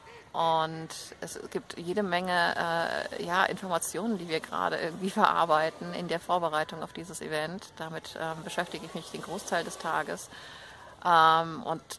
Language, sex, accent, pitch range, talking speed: German, female, German, 165-200 Hz, 150 wpm